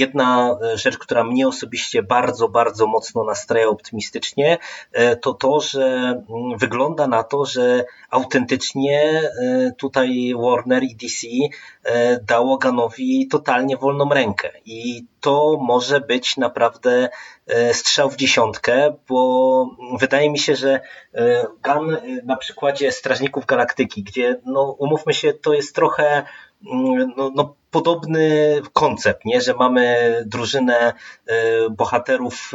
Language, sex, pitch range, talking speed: Polish, male, 115-150 Hz, 110 wpm